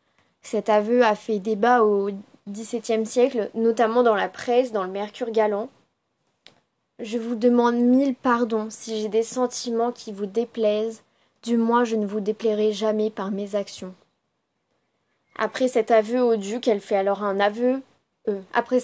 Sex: female